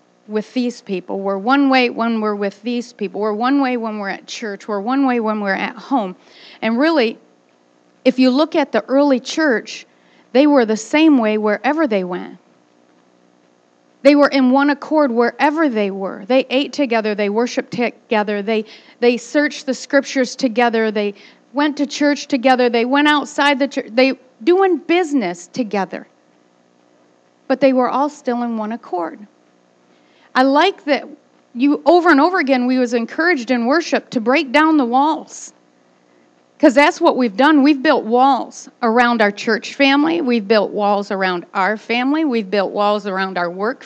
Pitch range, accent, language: 200-280 Hz, American, English